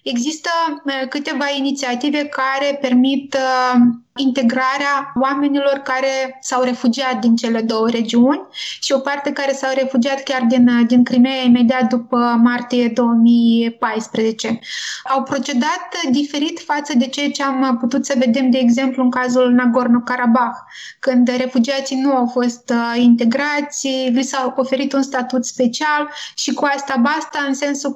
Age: 20-39